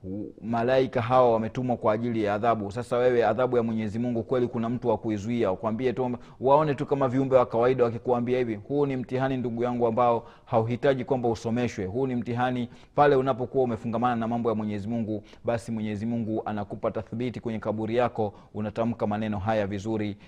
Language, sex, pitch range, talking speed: Swahili, male, 110-125 Hz, 175 wpm